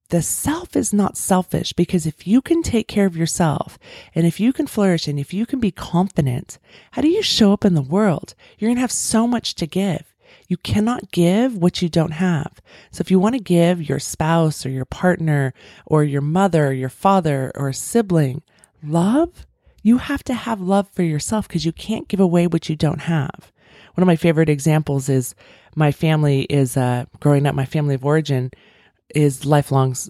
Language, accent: English, American